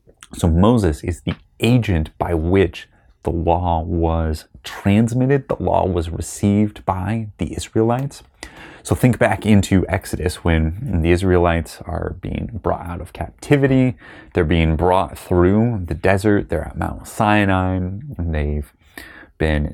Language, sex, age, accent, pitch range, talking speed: English, male, 30-49, American, 80-100 Hz, 135 wpm